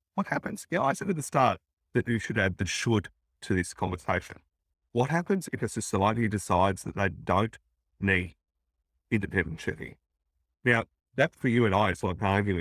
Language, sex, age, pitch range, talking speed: English, male, 50-69, 90-135 Hz, 190 wpm